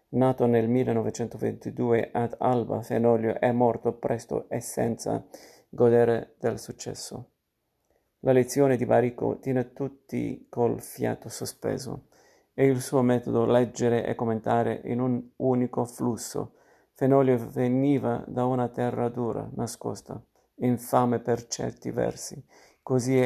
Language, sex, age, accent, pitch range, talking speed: Italian, male, 50-69, native, 115-130 Hz, 120 wpm